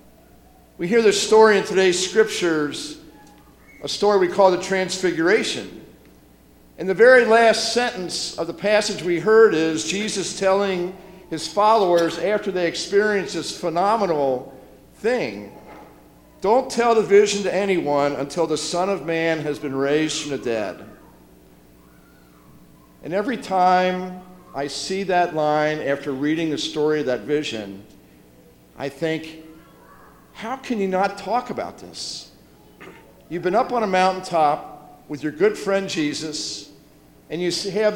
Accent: American